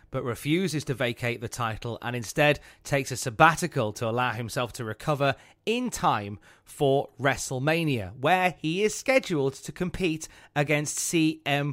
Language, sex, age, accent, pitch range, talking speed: English, male, 30-49, British, 120-160 Hz, 145 wpm